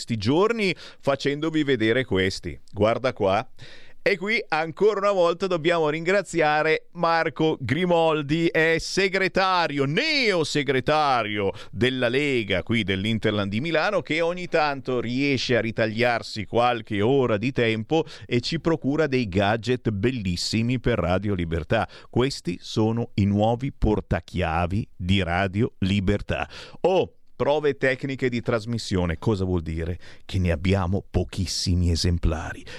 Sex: male